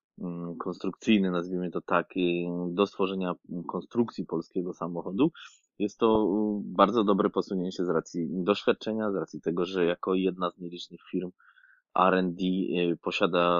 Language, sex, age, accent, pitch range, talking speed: Polish, male, 20-39, native, 85-95 Hz, 125 wpm